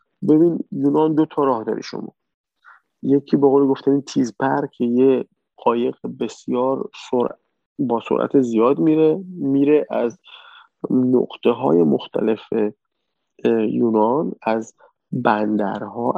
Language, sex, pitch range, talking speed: Persian, male, 130-180 Hz, 110 wpm